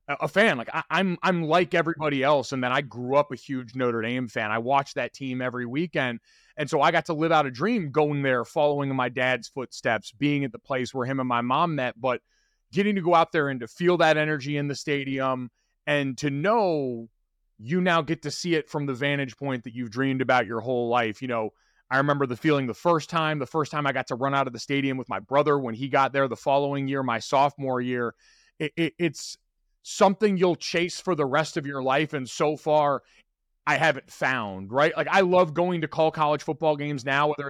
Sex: male